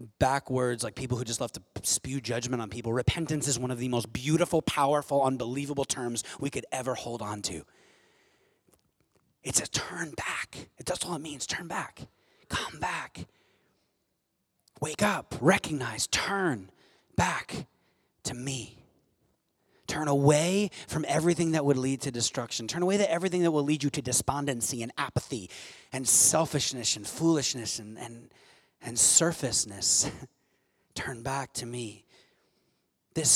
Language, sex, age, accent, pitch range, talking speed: English, male, 30-49, American, 105-140 Hz, 145 wpm